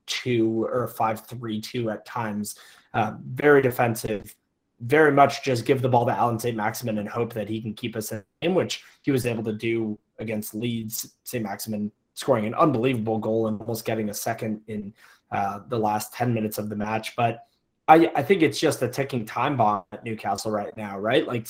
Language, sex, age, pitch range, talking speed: English, male, 20-39, 110-125 Hz, 205 wpm